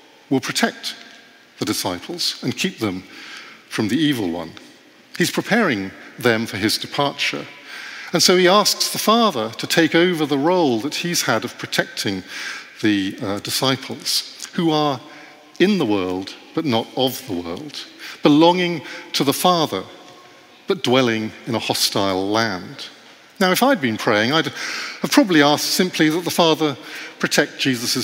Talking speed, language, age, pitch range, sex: 150 wpm, English, 50-69, 120-175 Hz, male